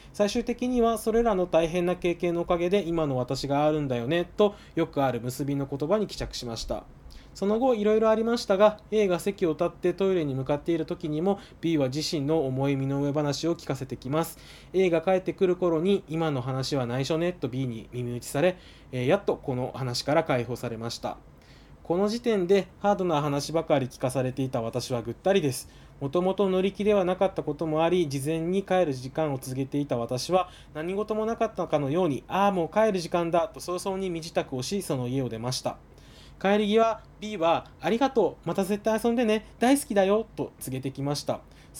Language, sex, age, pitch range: Japanese, male, 20-39, 135-195 Hz